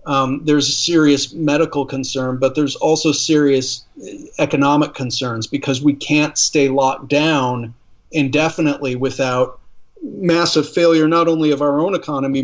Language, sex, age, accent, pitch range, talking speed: English, male, 40-59, American, 135-160 Hz, 135 wpm